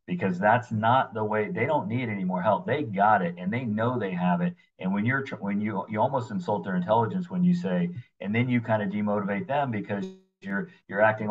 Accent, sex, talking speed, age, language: American, male, 235 wpm, 40-59, English